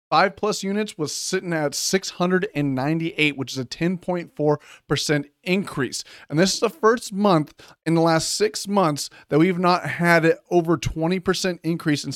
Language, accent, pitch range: English, American, 145-180 Hz